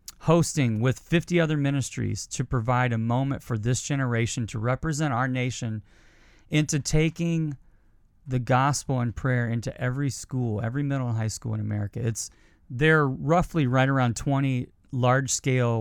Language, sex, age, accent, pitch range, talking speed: English, male, 30-49, American, 110-135 Hz, 150 wpm